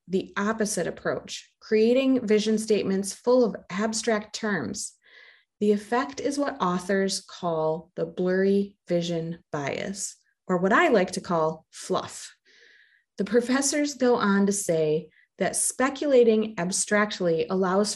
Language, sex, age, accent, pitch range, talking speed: English, female, 30-49, American, 175-230 Hz, 125 wpm